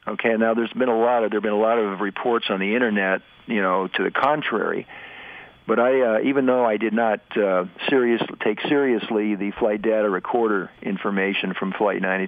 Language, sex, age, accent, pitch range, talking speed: English, male, 50-69, American, 100-115 Hz, 200 wpm